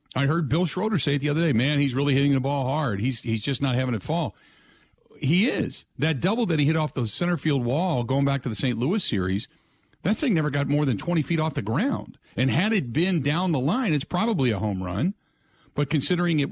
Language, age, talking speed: English, 50-69, 245 wpm